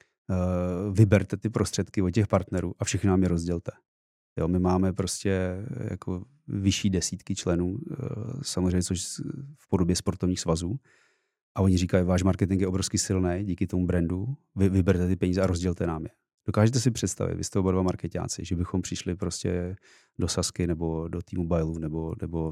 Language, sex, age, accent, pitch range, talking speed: Czech, male, 30-49, native, 90-100 Hz, 170 wpm